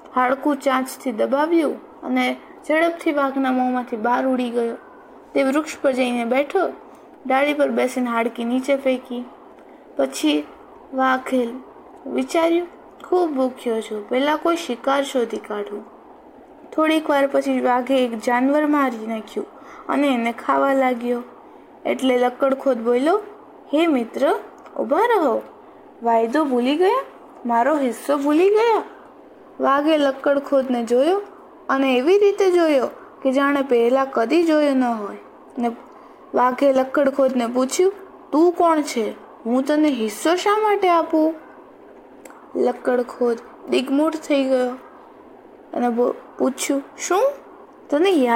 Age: 20-39